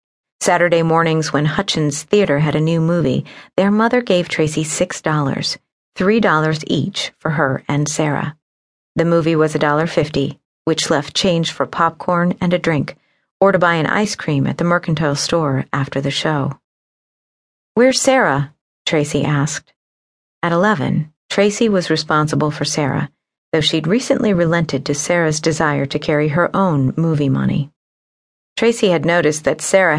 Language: English